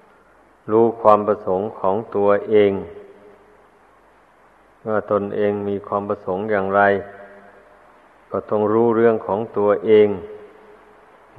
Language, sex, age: Thai, male, 50-69